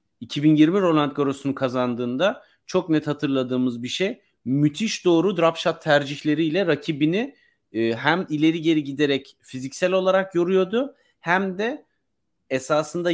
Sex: male